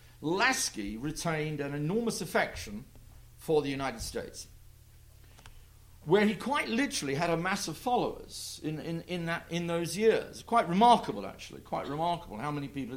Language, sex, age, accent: English, male, 50-69, British